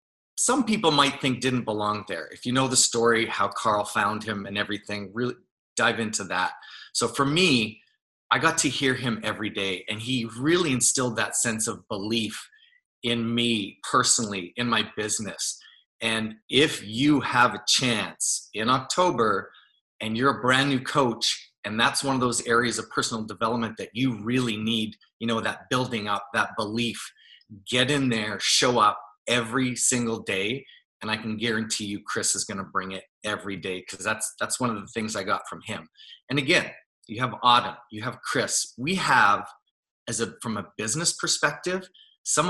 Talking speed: 180 wpm